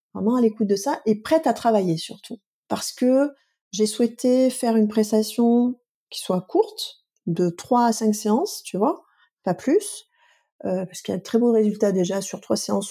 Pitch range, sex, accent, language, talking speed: 195-240 Hz, female, French, French, 195 wpm